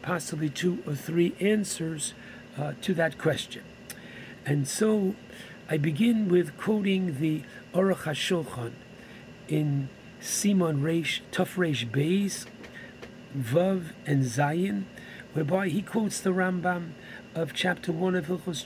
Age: 60-79